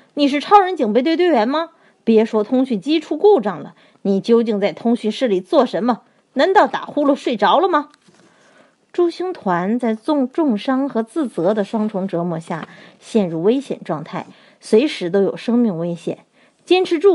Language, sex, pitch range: Chinese, female, 195-285 Hz